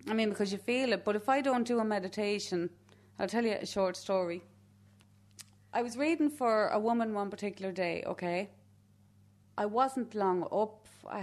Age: 30-49